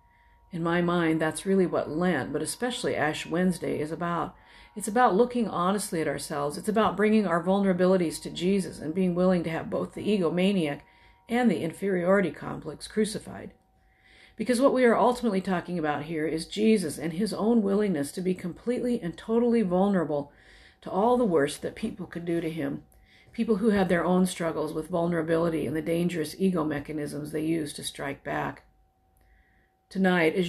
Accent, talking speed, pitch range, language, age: American, 175 wpm, 155-195 Hz, English, 50-69